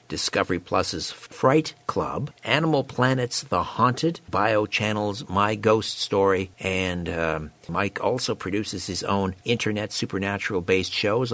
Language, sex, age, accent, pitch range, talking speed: English, male, 60-79, American, 95-120 Hz, 120 wpm